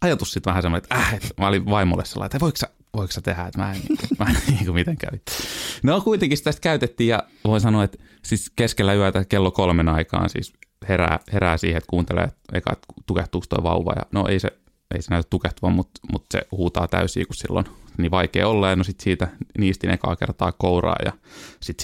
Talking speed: 210 wpm